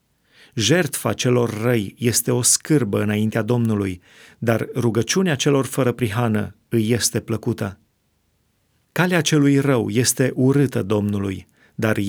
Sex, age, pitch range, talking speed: male, 40-59, 110-135 Hz, 115 wpm